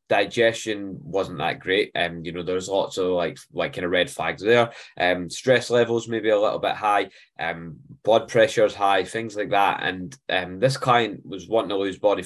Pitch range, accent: 90-120 Hz, British